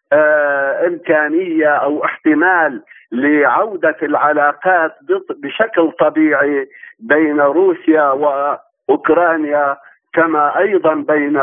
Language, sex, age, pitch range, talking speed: Arabic, male, 50-69, 145-185 Hz, 70 wpm